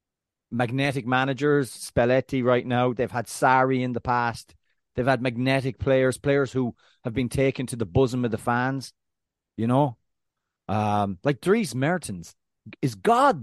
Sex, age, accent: male, 30-49, Irish